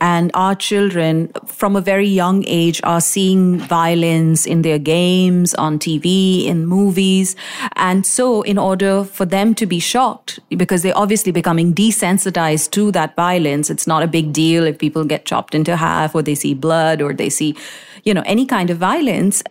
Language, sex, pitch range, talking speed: English, female, 165-200 Hz, 180 wpm